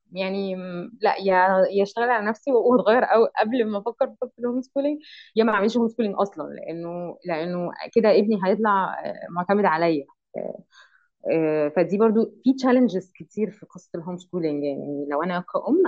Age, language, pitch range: 20-39, Arabic, 170-235 Hz